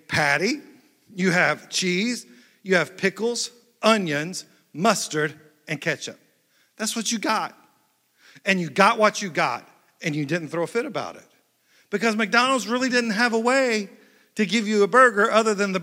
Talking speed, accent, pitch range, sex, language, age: 165 wpm, American, 180-230 Hz, male, English, 50-69